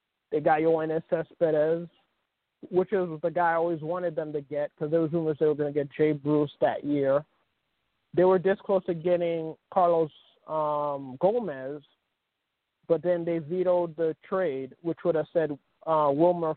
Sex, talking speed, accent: male, 170 wpm, American